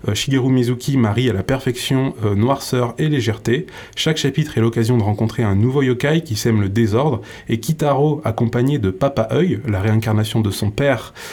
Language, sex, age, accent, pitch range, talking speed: French, male, 20-39, French, 115-140 Hz, 180 wpm